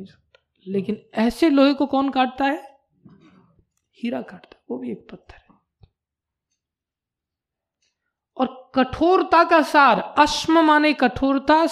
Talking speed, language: 115 wpm, Hindi